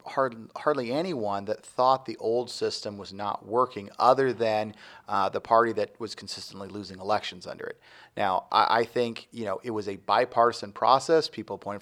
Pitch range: 105-125 Hz